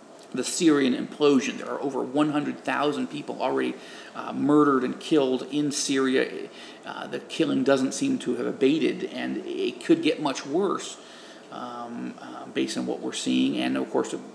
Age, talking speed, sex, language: 40-59, 165 wpm, male, English